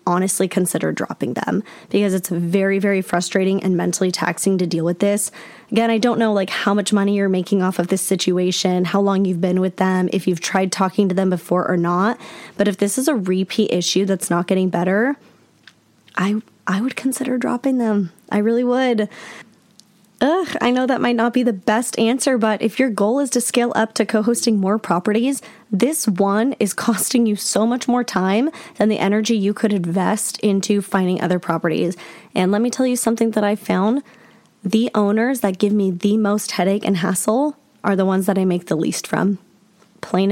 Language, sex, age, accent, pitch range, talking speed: English, female, 10-29, American, 185-225 Hz, 200 wpm